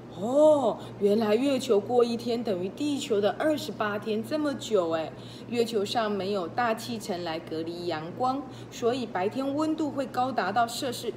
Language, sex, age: Chinese, female, 20-39